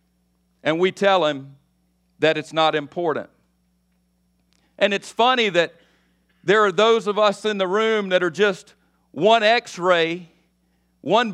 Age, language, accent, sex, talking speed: 50-69, English, American, male, 145 wpm